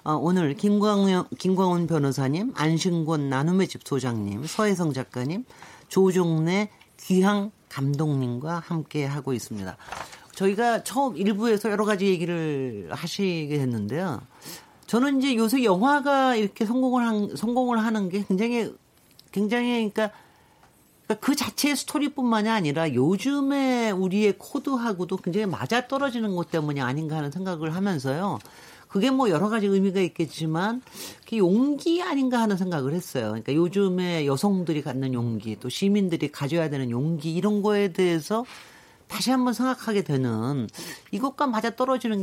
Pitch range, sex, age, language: 150-225 Hz, male, 40-59, Korean